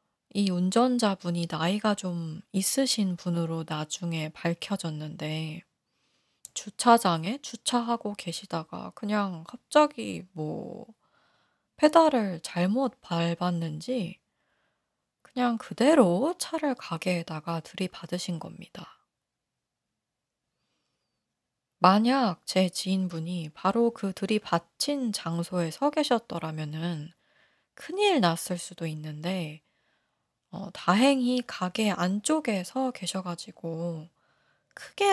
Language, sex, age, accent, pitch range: Korean, female, 20-39, native, 170-235 Hz